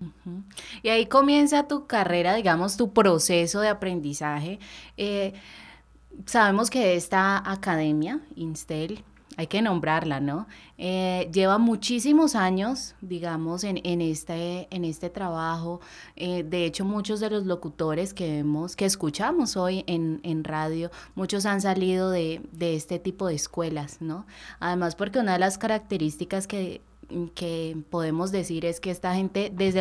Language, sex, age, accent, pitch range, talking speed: Spanish, female, 20-39, Colombian, 165-205 Hz, 145 wpm